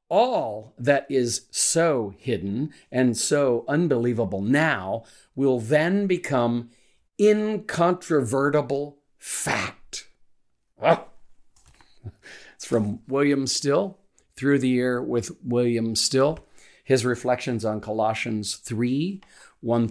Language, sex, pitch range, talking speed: English, male, 100-125 Hz, 90 wpm